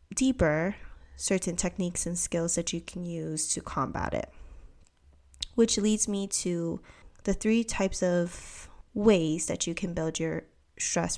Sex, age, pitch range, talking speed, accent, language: female, 10-29, 165-195 Hz, 145 wpm, American, English